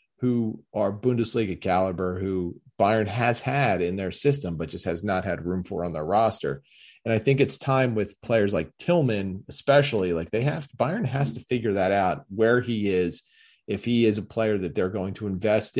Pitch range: 90-125 Hz